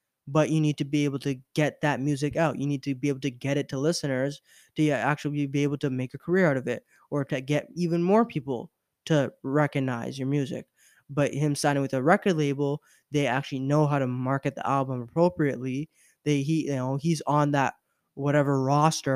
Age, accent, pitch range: 20-39, American, 135-155 Hz